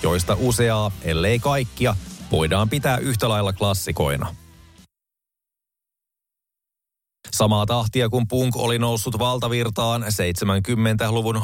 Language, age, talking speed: Finnish, 30-49, 90 wpm